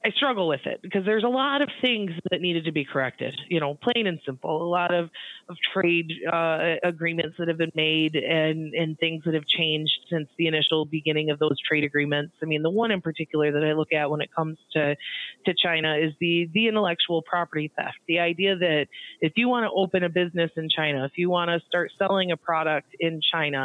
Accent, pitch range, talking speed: American, 155-185 Hz, 225 wpm